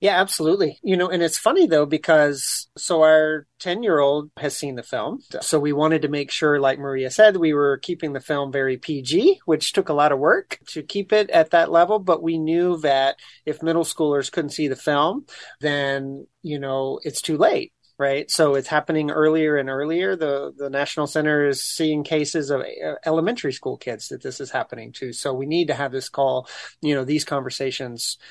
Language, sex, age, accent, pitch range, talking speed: English, male, 30-49, American, 140-165 Hz, 205 wpm